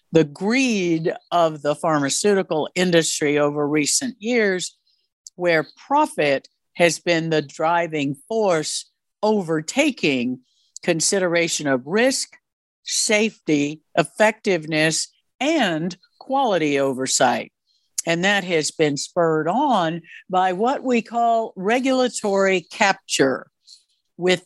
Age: 60-79